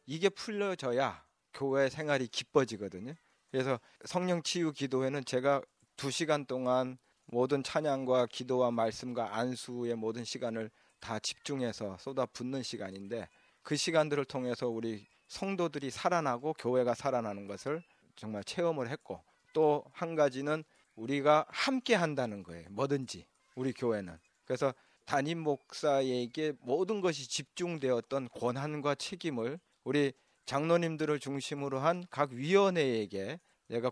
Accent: native